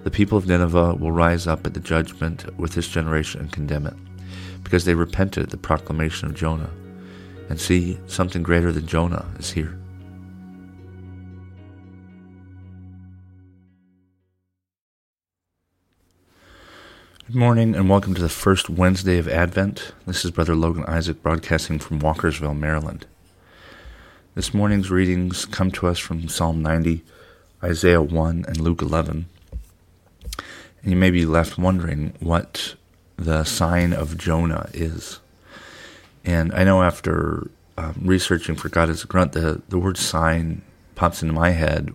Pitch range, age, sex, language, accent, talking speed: 80-95 Hz, 40-59, male, English, American, 135 wpm